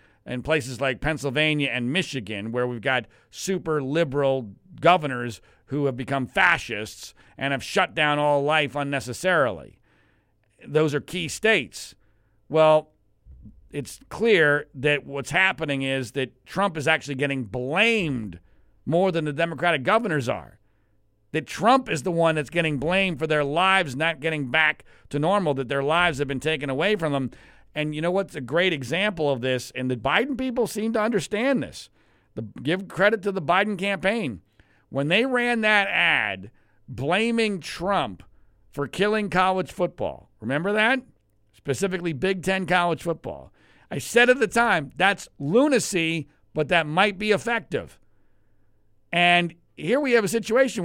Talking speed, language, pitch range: 155 wpm, English, 130-195 Hz